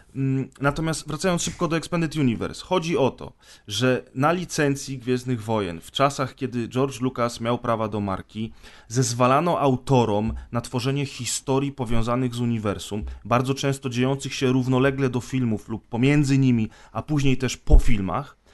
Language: Polish